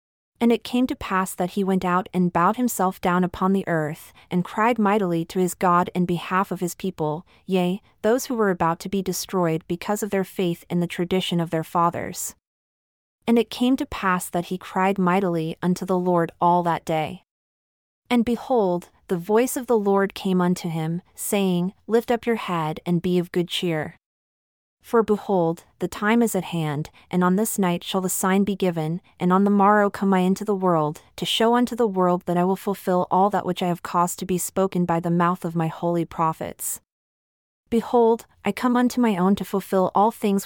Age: 30-49